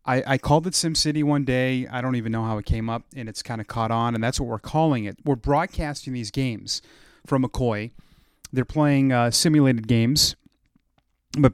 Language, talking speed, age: English, 205 wpm, 30-49